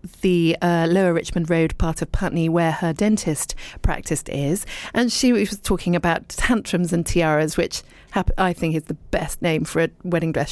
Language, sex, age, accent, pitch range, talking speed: English, female, 40-59, British, 170-215 Hz, 185 wpm